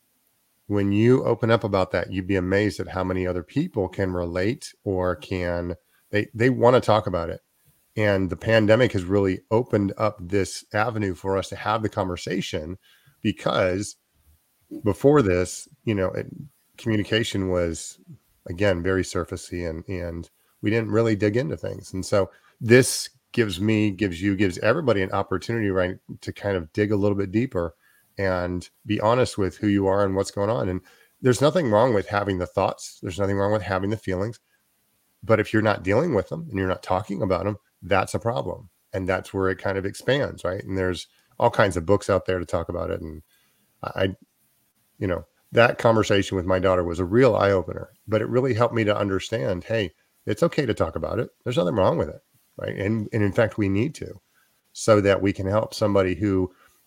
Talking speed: 200 wpm